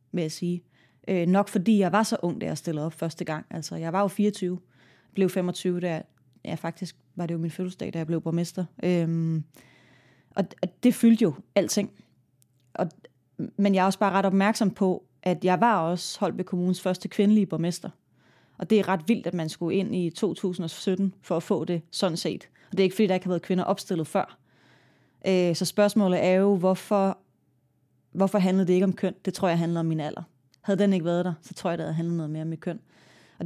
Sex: female